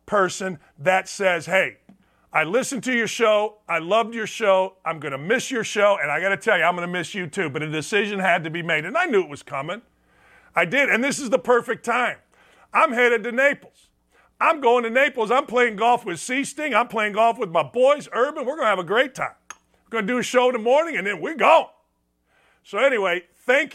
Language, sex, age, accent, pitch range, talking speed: English, male, 50-69, American, 165-240 Hz, 245 wpm